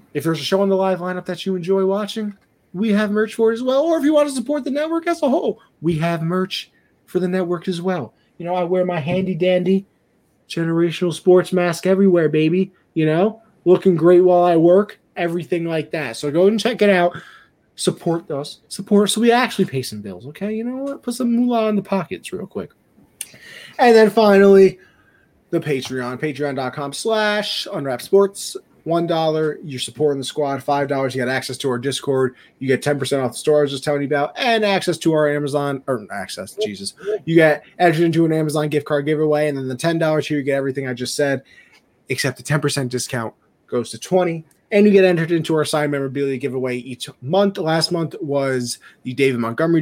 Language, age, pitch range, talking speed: English, 30-49, 145-195 Hz, 210 wpm